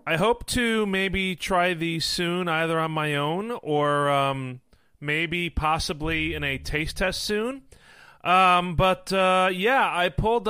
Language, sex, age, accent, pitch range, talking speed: English, male, 30-49, American, 150-185 Hz, 150 wpm